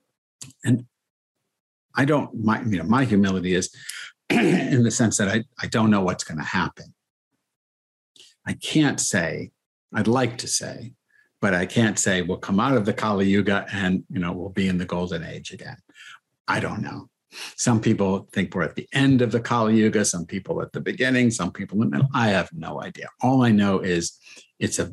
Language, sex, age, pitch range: English, male, 50-69, 95-125 Hz